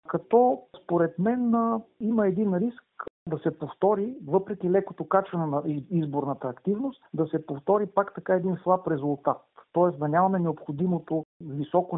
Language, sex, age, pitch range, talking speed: Bulgarian, male, 50-69, 155-195 Hz, 140 wpm